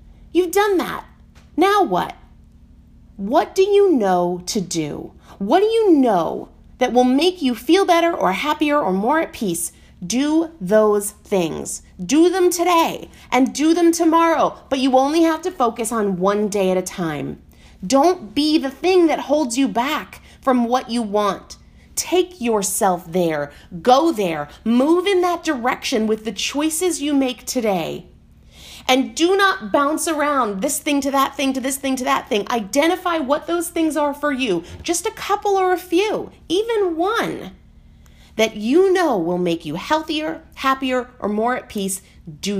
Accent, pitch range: American, 215-325 Hz